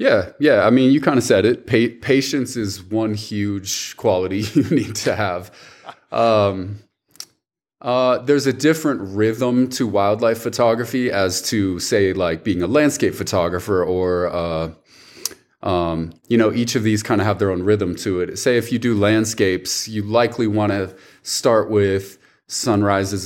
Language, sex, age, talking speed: French, male, 30-49, 165 wpm